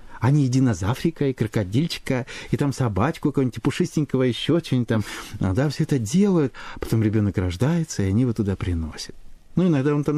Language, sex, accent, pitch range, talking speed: Russian, male, native, 105-160 Hz, 185 wpm